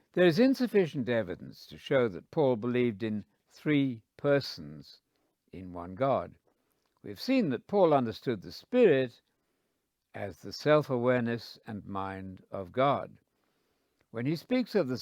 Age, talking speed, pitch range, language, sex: 60-79, 135 wpm, 110-160 Hz, English, male